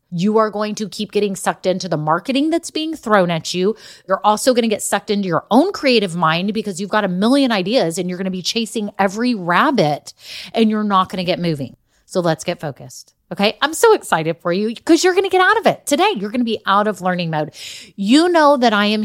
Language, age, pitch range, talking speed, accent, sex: English, 30-49, 175-230 Hz, 250 wpm, American, female